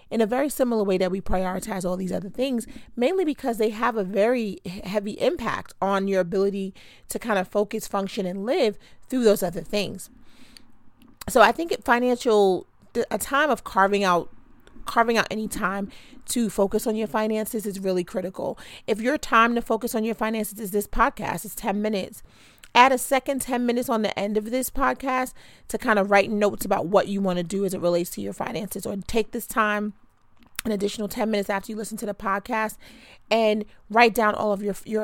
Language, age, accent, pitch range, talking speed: English, 30-49, American, 195-235 Hz, 200 wpm